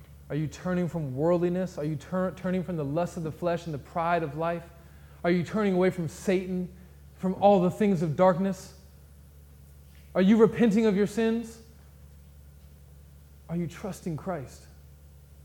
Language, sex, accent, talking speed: English, male, American, 160 wpm